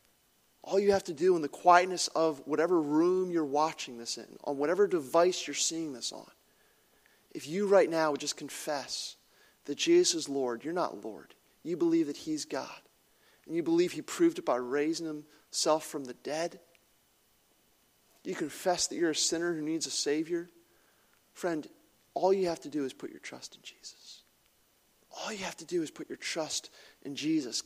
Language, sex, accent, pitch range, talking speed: English, male, American, 145-195 Hz, 185 wpm